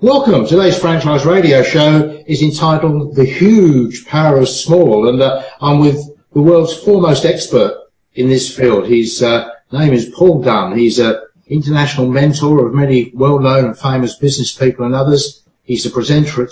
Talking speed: 170 wpm